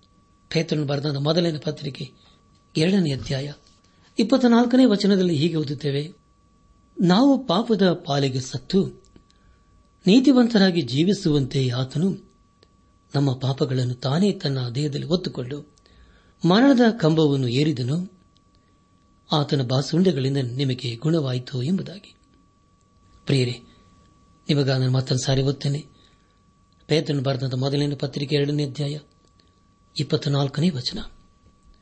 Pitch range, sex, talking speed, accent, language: 125-170 Hz, male, 80 wpm, native, Kannada